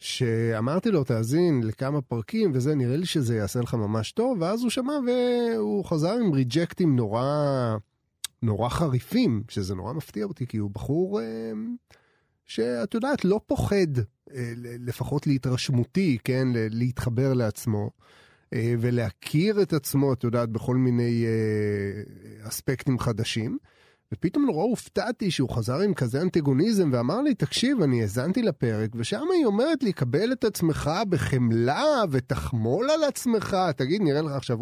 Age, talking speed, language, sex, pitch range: 30-49, 135 wpm, Hebrew, male, 120-200 Hz